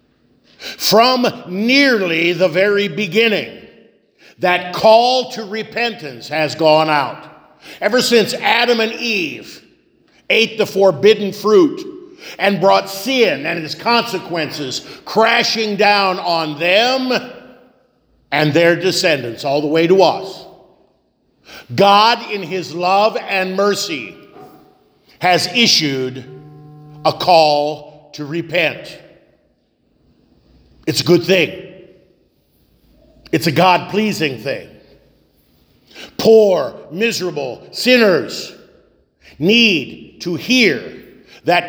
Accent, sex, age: American, male, 50-69